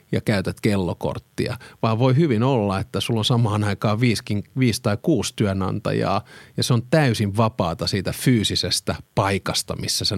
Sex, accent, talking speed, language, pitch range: male, native, 165 wpm, Finnish, 95-120 Hz